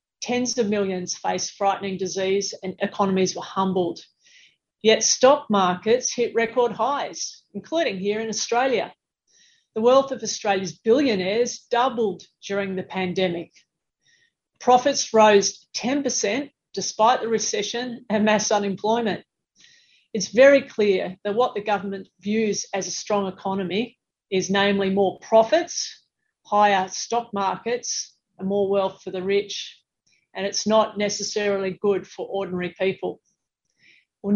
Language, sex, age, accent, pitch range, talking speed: English, female, 40-59, Australian, 190-225 Hz, 125 wpm